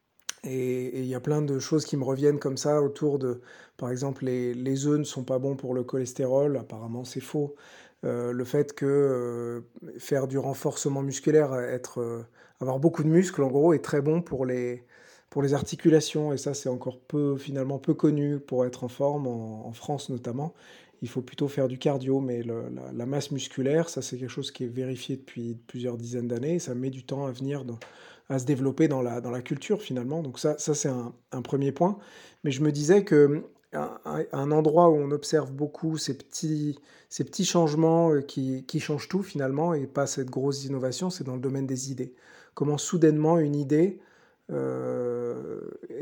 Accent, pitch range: French, 125-150 Hz